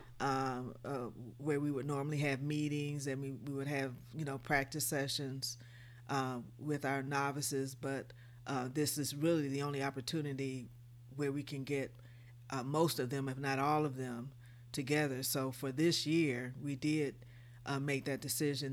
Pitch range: 125-145 Hz